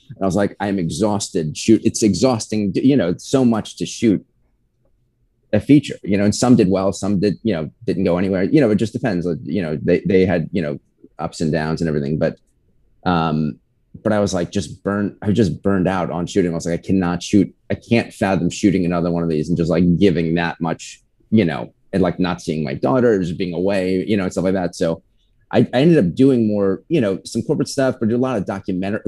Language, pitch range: English, 85-110 Hz